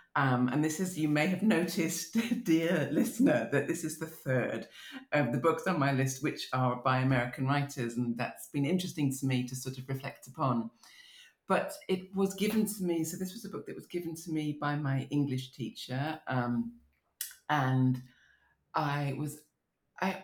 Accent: British